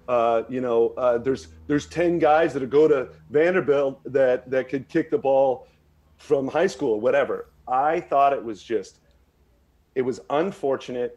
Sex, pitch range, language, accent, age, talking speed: male, 115-160 Hz, English, American, 40-59, 165 wpm